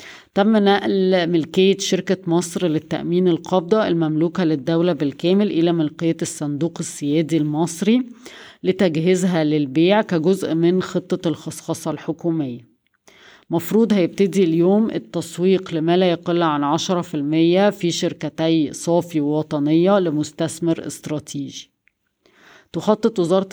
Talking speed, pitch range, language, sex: 100 wpm, 160-185 Hz, Arabic, female